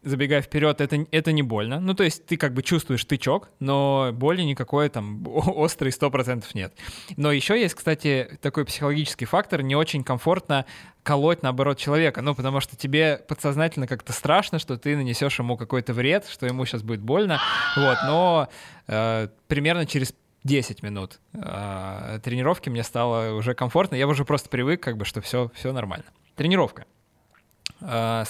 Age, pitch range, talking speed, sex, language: 20-39, 120-150 Hz, 165 wpm, male, Russian